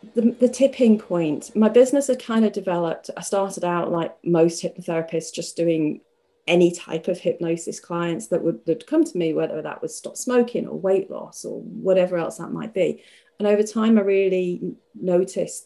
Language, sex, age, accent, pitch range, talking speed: English, female, 40-59, British, 170-205 Hz, 190 wpm